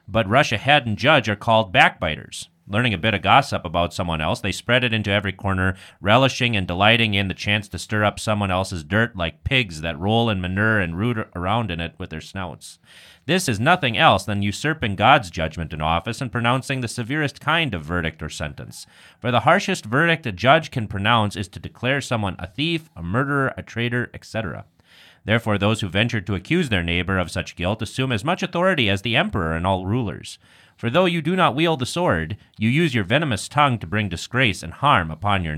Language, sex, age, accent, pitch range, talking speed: English, male, 30-49, American, 95-125 Hz, 215 wpm